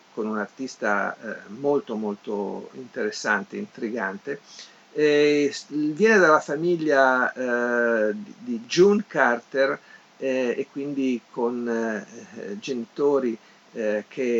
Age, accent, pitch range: 50-69, native, 115-145 Hz